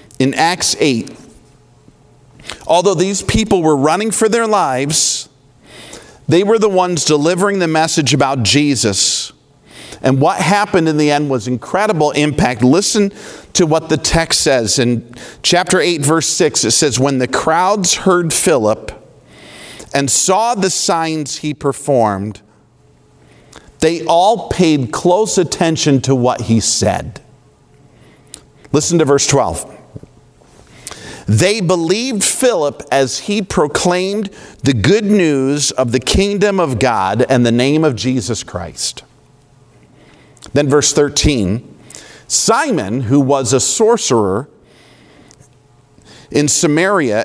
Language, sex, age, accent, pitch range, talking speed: English, male, 50-69, American, 130-180 Hz, 120 wpm